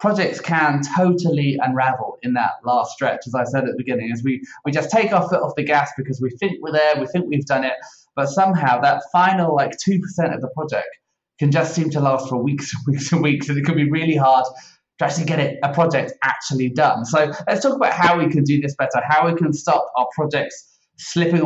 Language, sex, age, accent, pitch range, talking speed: English, male, 20-39, British, 135-170 Hz, 240 wpm